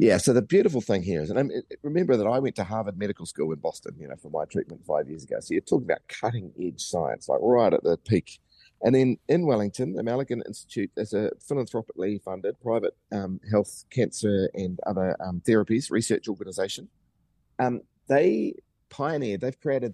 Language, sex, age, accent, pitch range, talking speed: English, male, 30-49, Australian, 95-115 Hz, 195 wpm